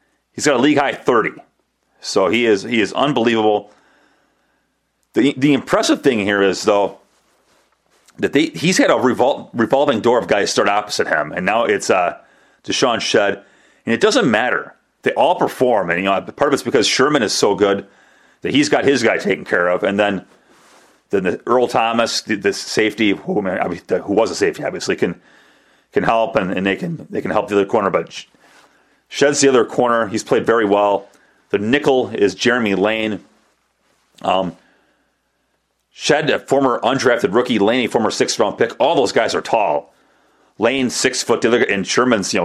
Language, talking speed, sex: English, 185 wpm, male